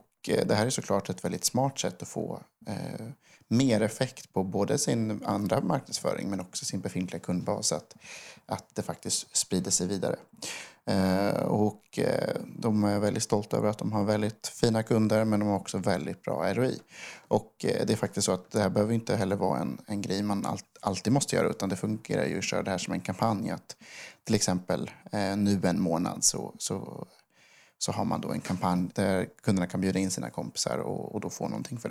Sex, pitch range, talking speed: male, 95-110 Hz, 210 wpm